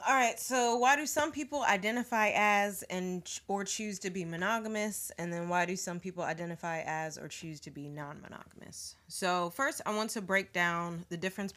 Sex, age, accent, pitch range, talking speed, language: female, 20-39, American, 160-195 Hz, 190 wpm, English